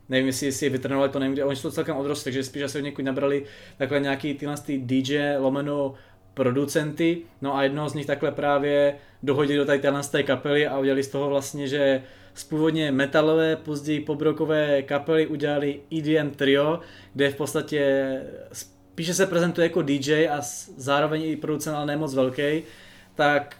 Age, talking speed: 20-39, 170 wpm